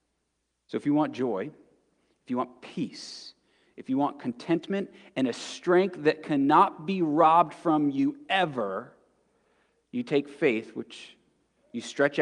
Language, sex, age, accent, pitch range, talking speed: English, male, 30-49, American, 140-180 Hz, 140 wpm